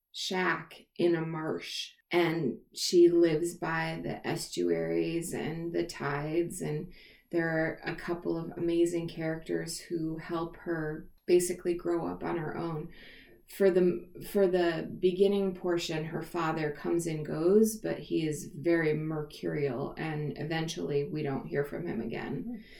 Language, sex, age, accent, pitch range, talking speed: English, female, 20-39, American, 160-180 Hz, 140 wpm